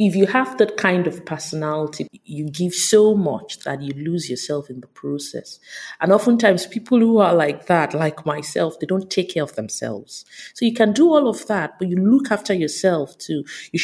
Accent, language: Nigerian, English